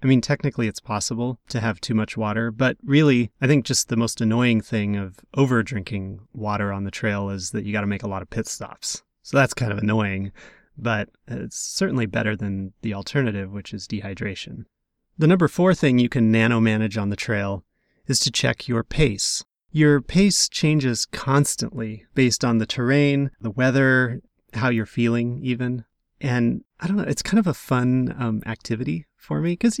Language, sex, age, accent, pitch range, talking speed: English, male, 30-49, American, 110-135 Hz, 190 wpm